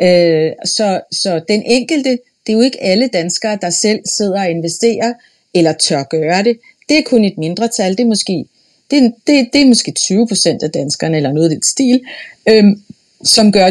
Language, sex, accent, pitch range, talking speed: Danish, female, native, 180-230 Hz, 195 wpm